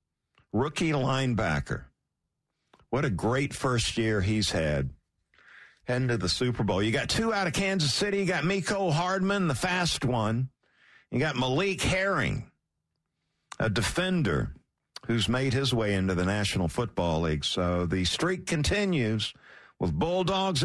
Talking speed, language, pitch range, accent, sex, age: 140 wpm, English, 115-170 Hz, American, male, 50-69